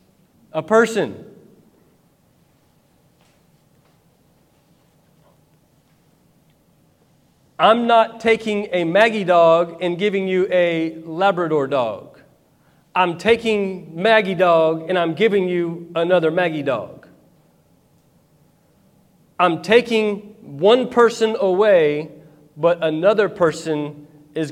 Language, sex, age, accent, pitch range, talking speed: English, male, 40-59, American, 140-185 Hz, 85 wpm